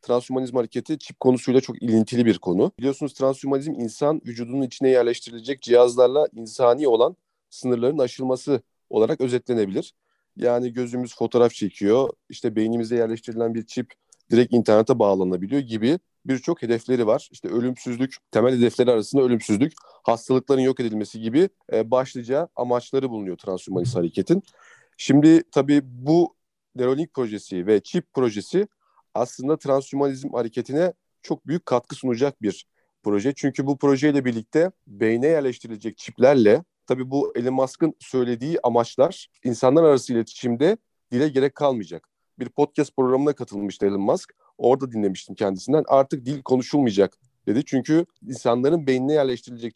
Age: 40-59